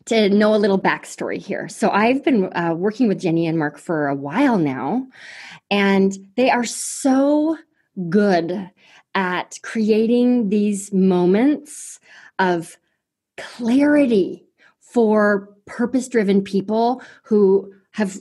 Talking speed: 115 wpm